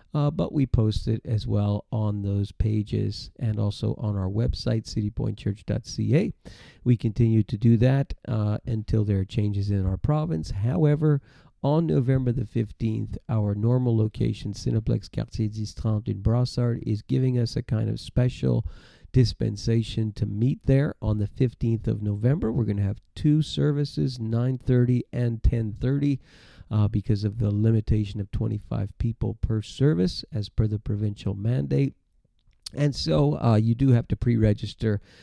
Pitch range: 105-125 Hz